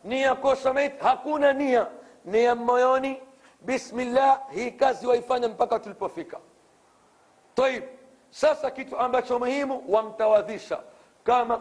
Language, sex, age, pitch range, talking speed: Swahili, male, 50-69, 215-260 Hz, 100 wpm